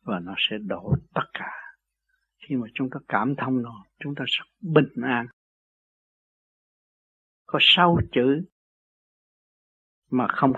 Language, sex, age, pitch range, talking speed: Vietnamese, male, 60-79, 130-170 Hz, 130 wpm